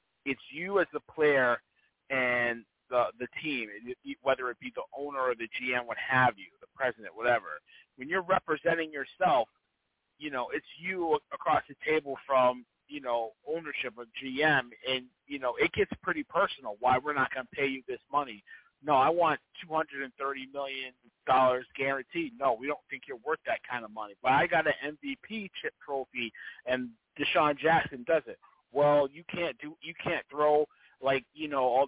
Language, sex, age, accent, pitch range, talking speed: English, male, 30-49, American, 125-155 Hz, 180 wpm